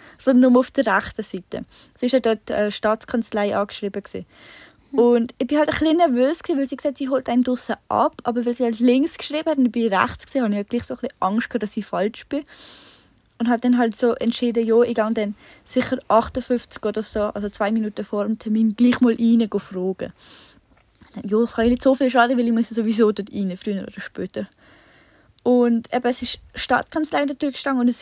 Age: 10-29